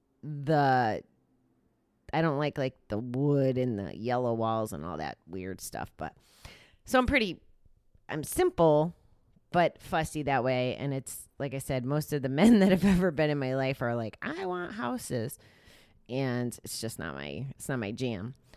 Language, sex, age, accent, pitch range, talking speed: English, female, 30-49, American, 120-165 Hz, 180 wpm